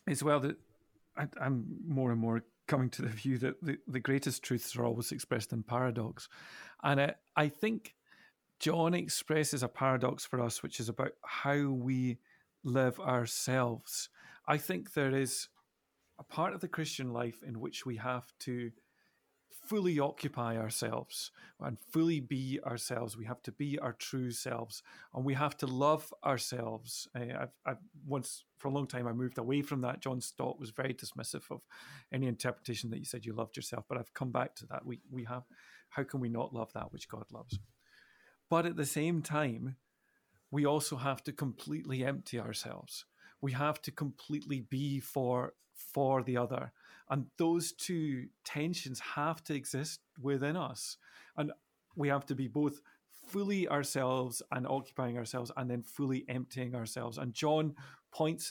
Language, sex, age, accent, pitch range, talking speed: English, male, 40-59, British, 125-145 Hz, 170 wpm